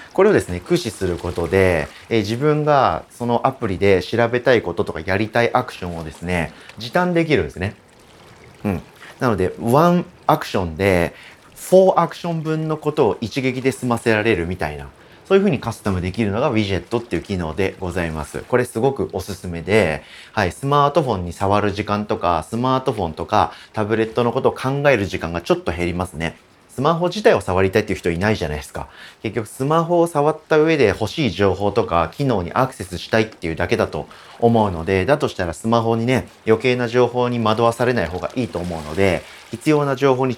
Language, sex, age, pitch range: Japanese, male, 30-49, 90-135 Hz